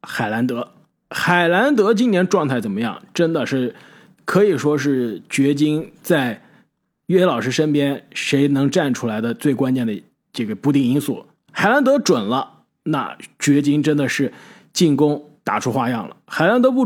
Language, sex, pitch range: Chinese, male, 135-195 Hz